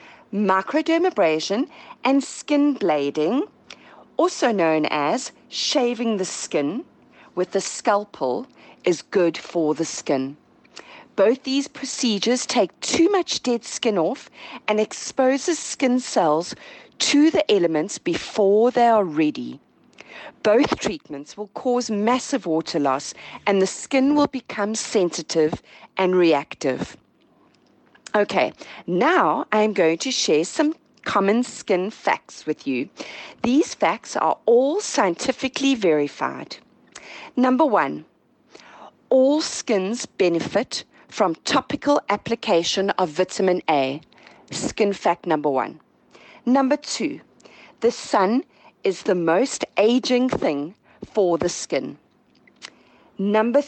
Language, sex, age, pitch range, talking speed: English, female, 40-59, 180-275 Hz, 110 wpm